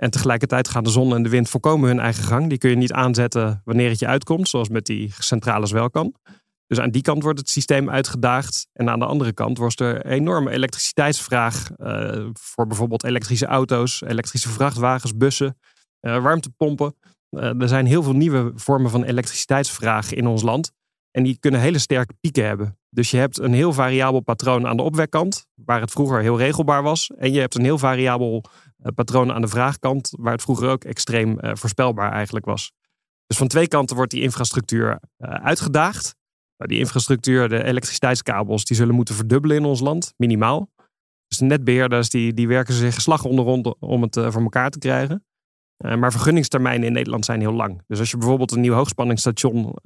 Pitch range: 115-135 Hz